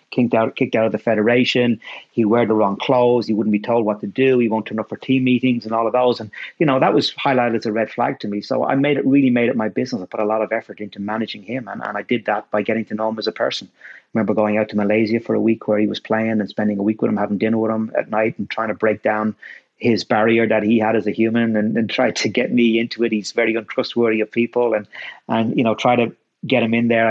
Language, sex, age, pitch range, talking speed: English, male, 30-49, 105-115 Hz, 295 wpm